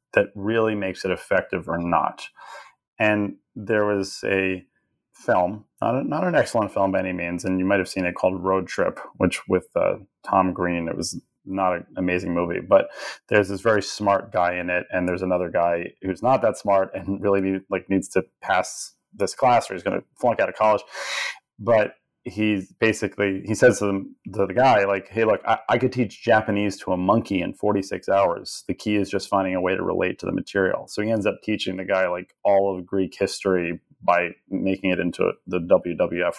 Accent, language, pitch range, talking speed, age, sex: American, English, 90-105 Hz, 210 wpm, 30-49, male